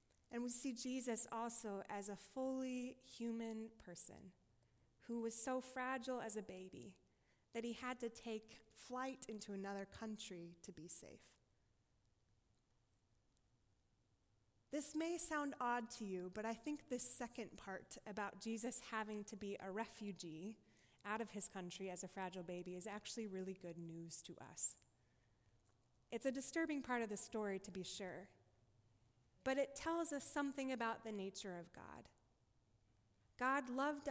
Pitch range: 180-245 Hz